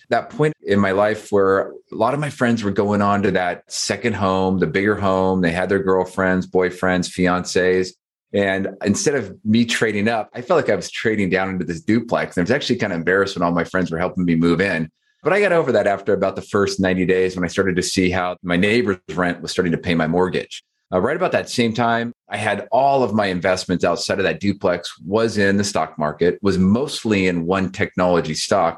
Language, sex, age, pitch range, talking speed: English, male, 30-49, 85-100 Hz, 235 wpm